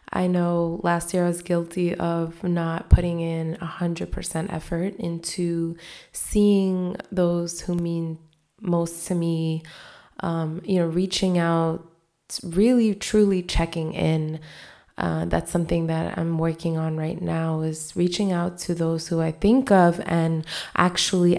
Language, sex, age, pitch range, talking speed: English, female, 20-39, 165-190 Hz, 145 wpm